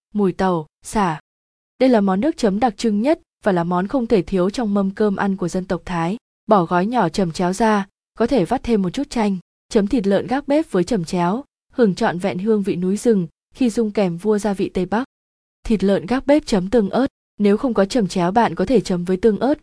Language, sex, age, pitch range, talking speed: Vietnamese, female, 20-39, 190-240 Hz, 245 wpm